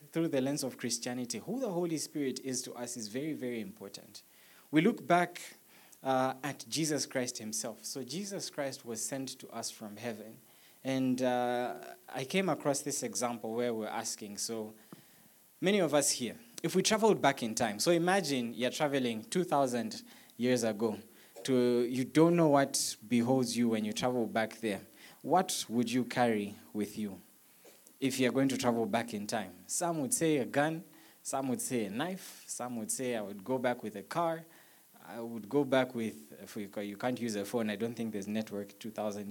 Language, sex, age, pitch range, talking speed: English, male, 20-39, 110-145 Hz, 190 wpm